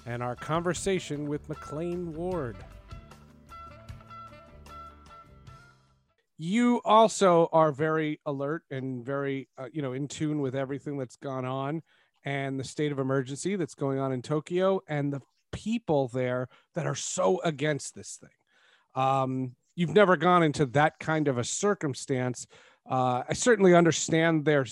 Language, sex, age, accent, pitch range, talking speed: English, male, 40-59, American, 130-175 Hz, 140 wpm